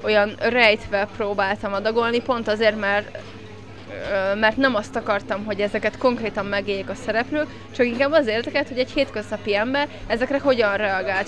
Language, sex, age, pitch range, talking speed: Hungarian, female, 20-39, 200-230 Hz, 150 wpm